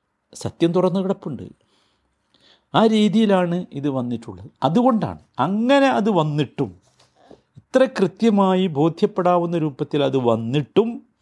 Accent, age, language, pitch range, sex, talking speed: native, 50-69, Malayalam, 125-180 Hz, male, 90 wpm